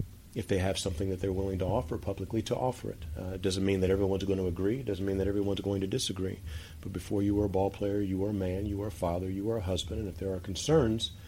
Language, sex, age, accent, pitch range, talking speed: English, male, 40-59, American, 90-105 Hz, 285 wpm